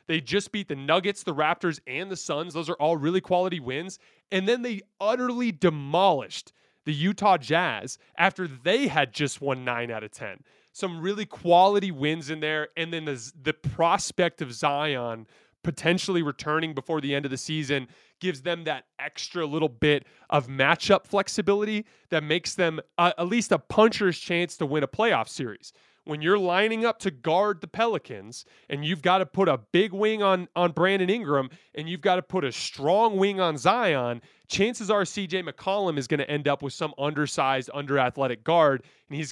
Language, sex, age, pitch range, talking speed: English, male, 20-39, 145-190 Hz, 190 wpm